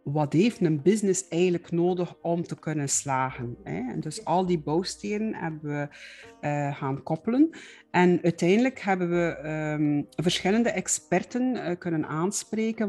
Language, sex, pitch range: Dutch, female, 155-185 Hz